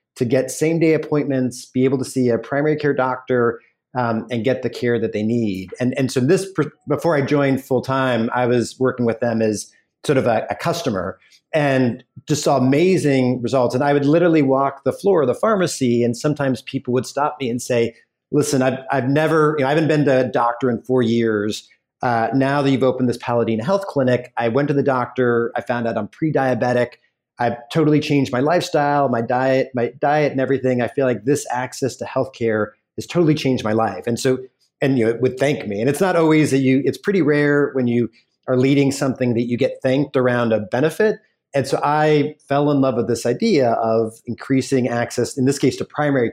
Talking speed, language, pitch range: 215 wpm, English, 120-140 Hz